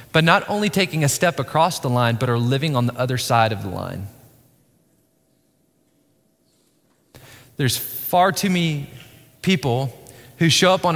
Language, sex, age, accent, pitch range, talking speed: English, male, 20-39, American, 125-180 Hz, 155 wpm